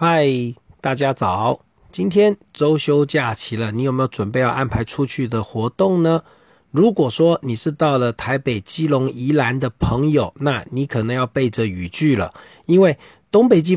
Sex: male